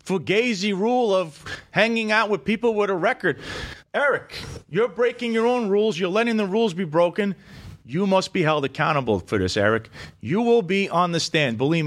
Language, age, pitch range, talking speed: English, 30-49, 145-195 Hz, 185 wpm